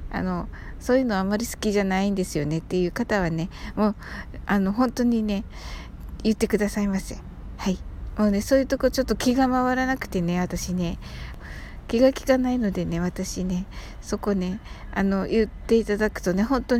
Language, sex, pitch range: Japanese, female, 185-225 Hz